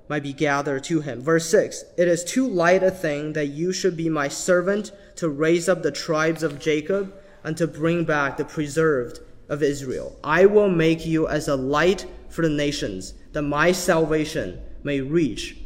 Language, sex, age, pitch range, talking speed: English, male, 20-39, 145-175 Hz, 190 wpm